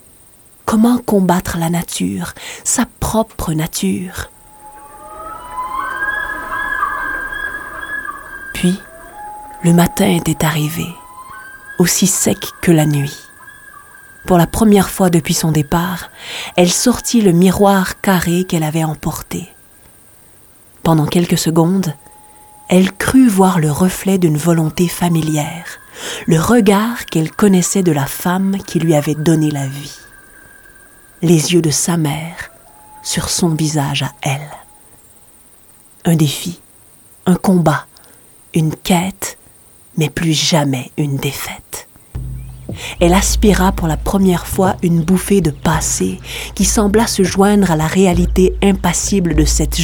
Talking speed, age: 115 wpm, 40-59